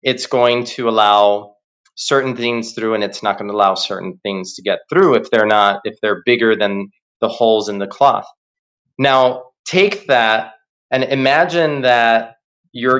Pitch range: 110-140 Hz